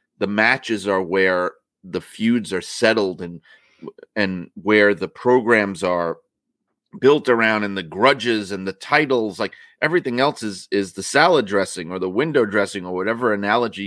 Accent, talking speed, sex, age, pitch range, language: American, 160 wpm, male, 30-49, 100-130 Hz, English